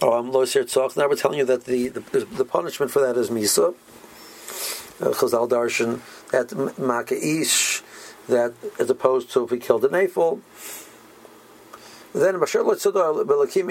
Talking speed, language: 160 wpm, English